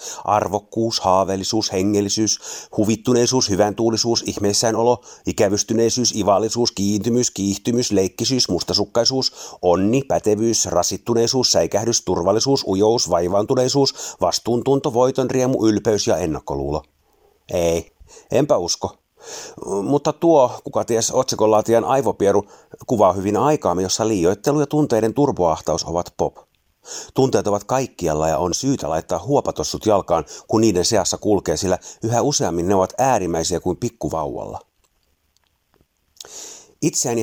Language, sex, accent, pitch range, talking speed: Finnish, male, native, 95-125 Hz, 110 wpm